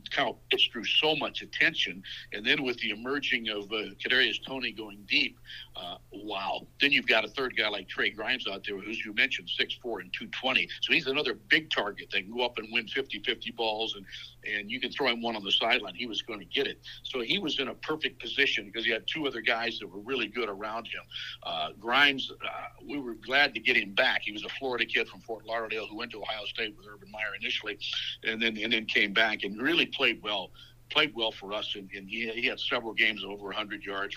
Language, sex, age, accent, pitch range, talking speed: English, male, 60-79, American, 105-125 Hz, 245 wpm